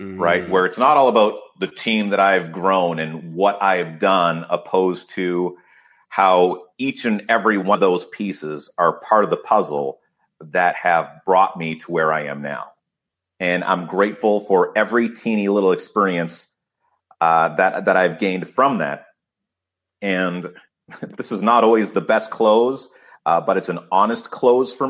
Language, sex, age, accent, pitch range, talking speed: English, male, 30-49, American, 85-110 Hz, 165 wpm